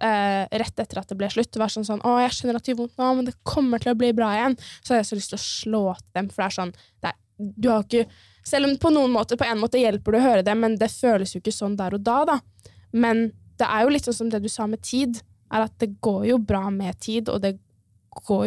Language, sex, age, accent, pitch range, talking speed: English, female, 10-29, Norwegian, 195-235 Hz, 265 wpm